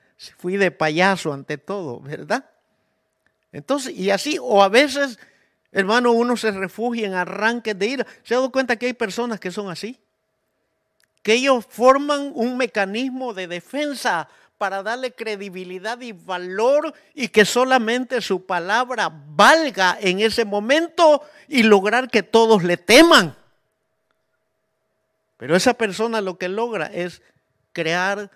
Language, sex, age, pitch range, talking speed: Spanish, male, 50-69, 160-235 Hz, 140 wpm